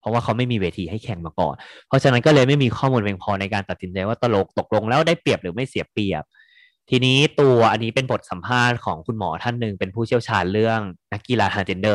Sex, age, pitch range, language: male, 20-39, 95-125 Hz, Thai